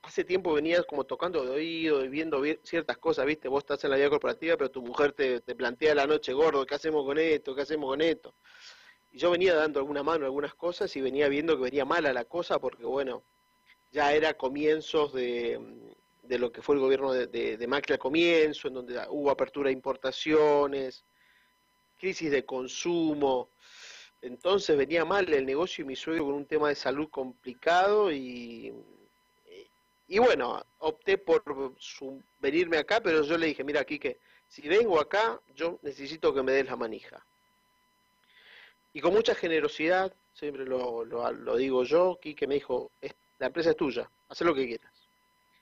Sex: male